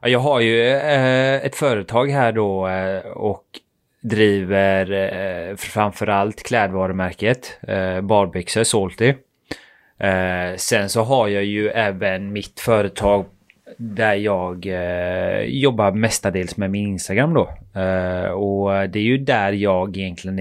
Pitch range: 100-125 Hz